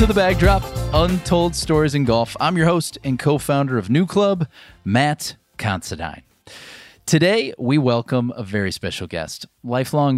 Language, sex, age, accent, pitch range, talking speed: English, male, 30-49, American, 105-145 Hz, 155 wpm